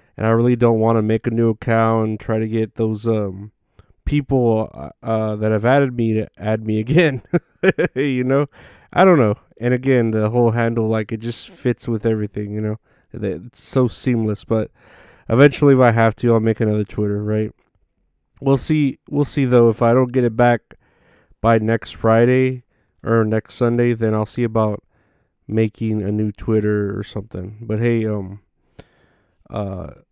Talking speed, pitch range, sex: 175 wpm, 110-125 Hz, male